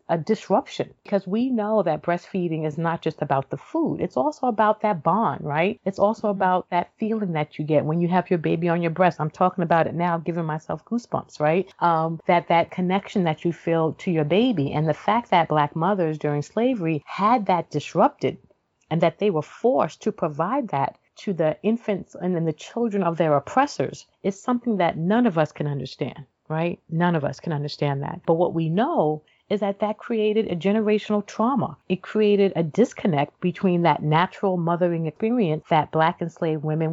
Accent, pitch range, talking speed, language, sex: American, 160-215 Hz, 200 wpm, English, female